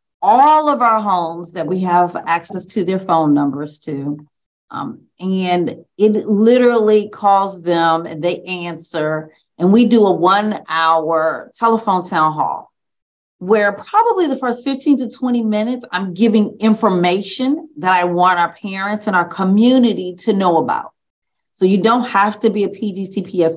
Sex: female